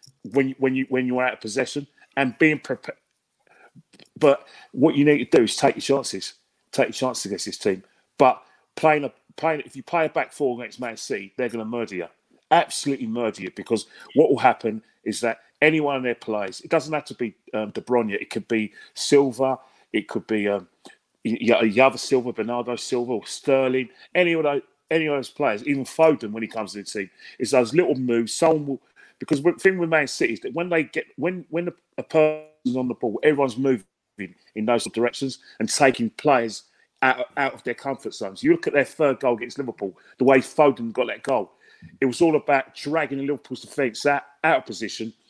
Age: 40-59